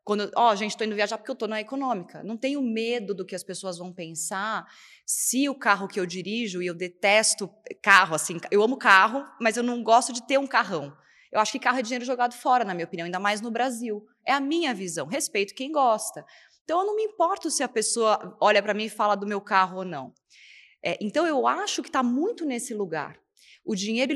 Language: Portuguese